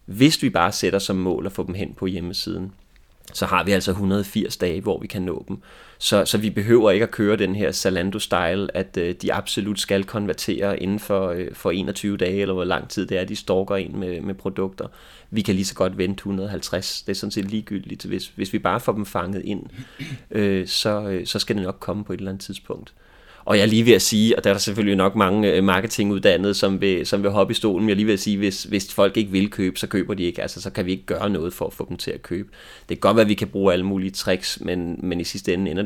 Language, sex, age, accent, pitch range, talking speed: Danish, male, 30-49, native, 95-105 Hz, 260 wpm